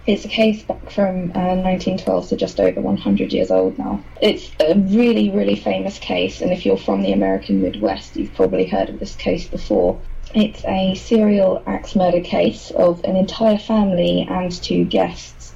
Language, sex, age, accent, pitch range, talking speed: English, female, 20-39, British, 175-220 Hz, 185 wpm